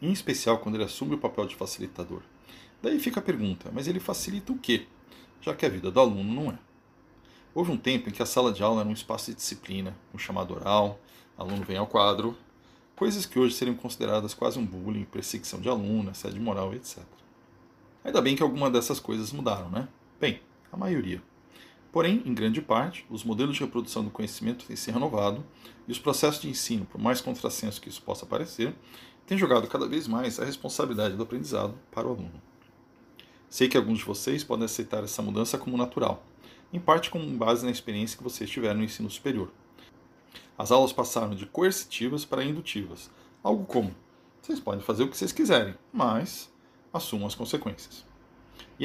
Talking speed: 190 wpm